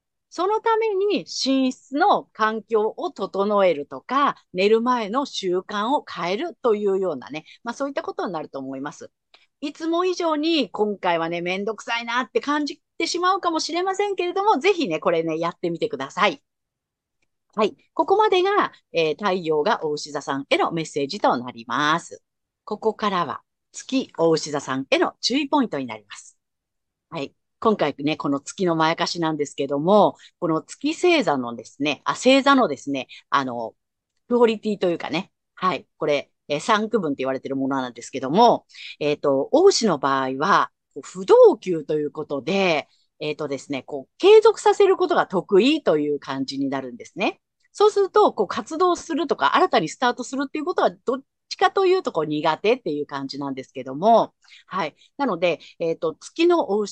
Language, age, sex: Japanese, 40-59, female